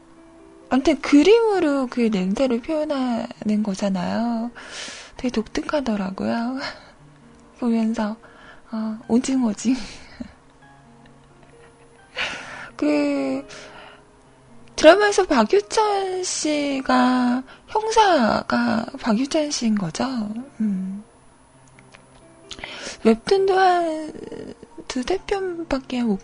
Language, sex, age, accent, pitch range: Korean, female, 20-39, native, 215-295 Hz